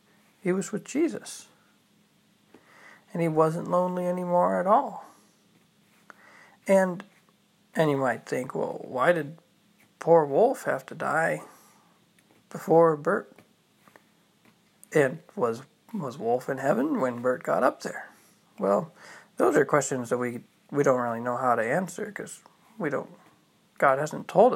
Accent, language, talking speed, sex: American, English, 130 wpm, male